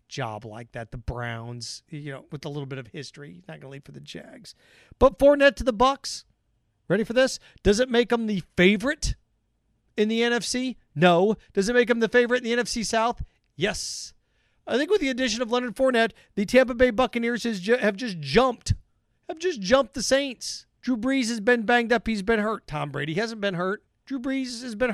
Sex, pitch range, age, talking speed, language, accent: male, 175-245 Hz, 40-59, 210 wpm, English, American